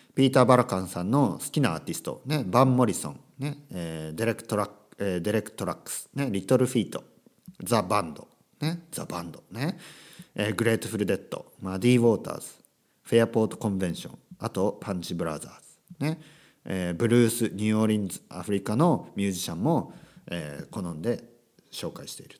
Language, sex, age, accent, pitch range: Japanese, male, 50-69, native, 100-165 Hz